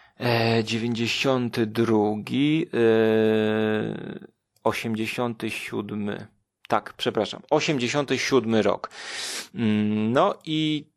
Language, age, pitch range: Polish, 30-49, 115-155 Hz